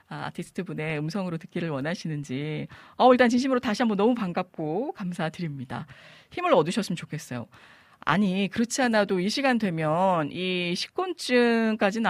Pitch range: 170-240 Hz